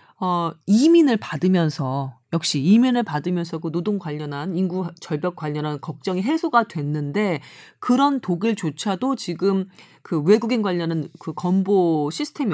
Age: 40-59